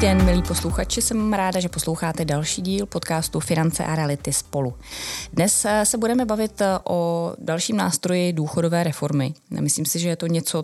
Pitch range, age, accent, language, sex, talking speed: 145-165 Hz, 20-39, native, Czech, female, 165 wpm